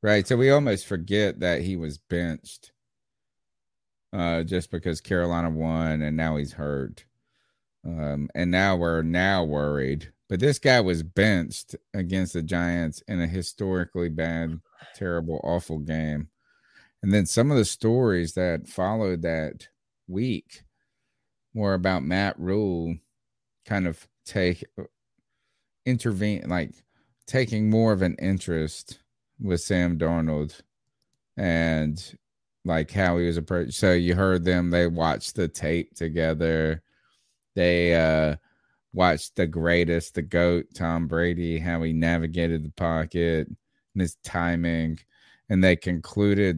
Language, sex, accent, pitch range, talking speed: English, male, American, 80-95 Hz, 130 wpm